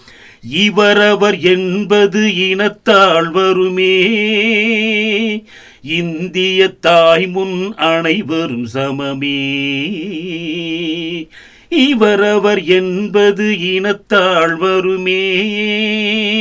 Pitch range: 170-245 Hz